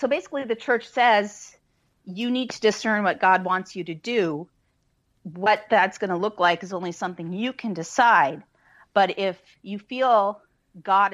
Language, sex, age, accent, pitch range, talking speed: English, female, 40-59, American, 175-210 Hz, 175 wpm